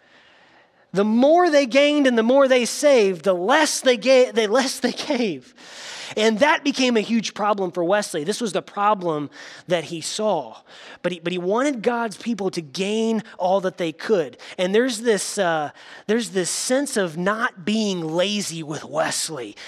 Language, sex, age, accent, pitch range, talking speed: English, male, 20-39, American, 170-225 Hz, 160 wpm